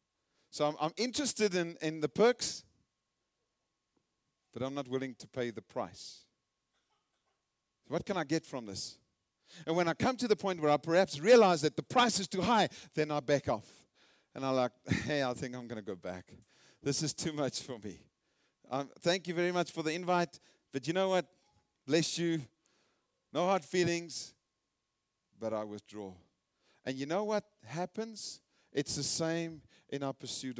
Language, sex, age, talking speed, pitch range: English, male, 50-69, 175 wpm, 130-180 Hz